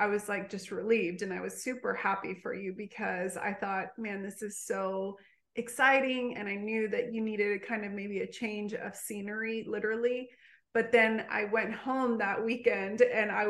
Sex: female